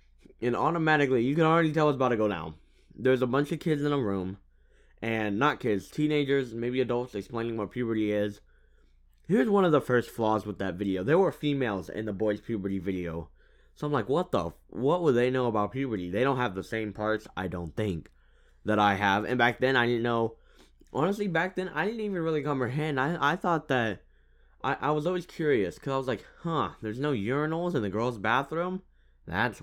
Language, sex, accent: English, male, American